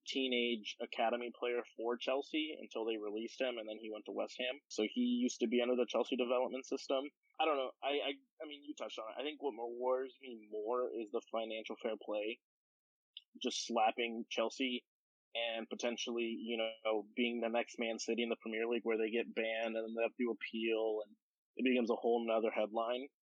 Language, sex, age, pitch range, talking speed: English, male, 20-39, 115-135 Hz, 210 wpm